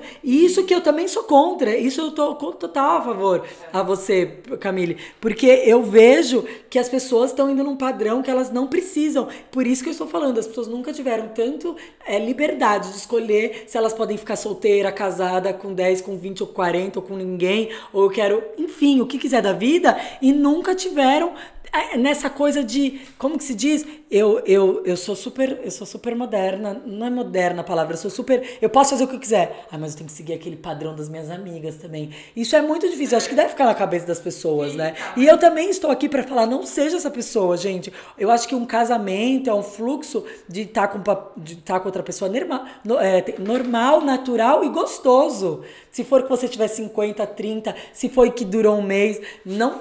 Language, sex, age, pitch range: Portuguese, female, 20-39, 195-275 Hz